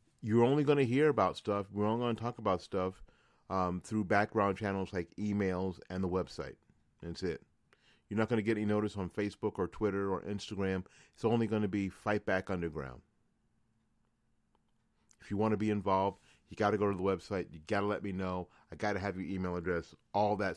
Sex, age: male, 40-59